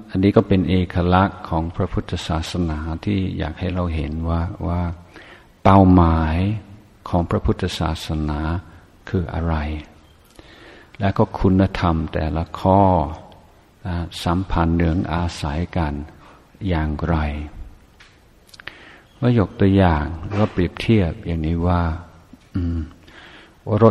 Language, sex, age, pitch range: Thai, male, 60-79, 85-100 Hz